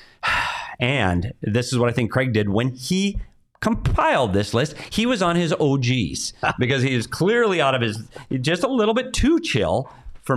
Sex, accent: male, American